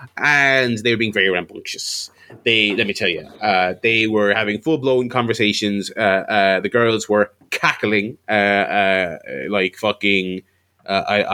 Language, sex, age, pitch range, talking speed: English, male, 20-39, 105-130 Hz, 155 wpm